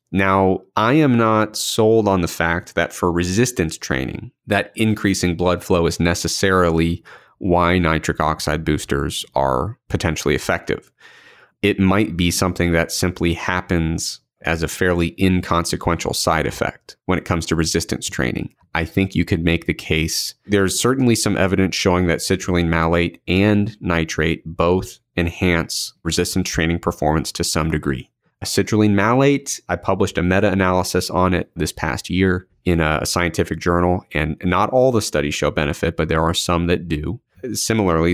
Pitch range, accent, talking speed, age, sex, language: 85-95 Hz, American, 155 wpm, 30-49, male, English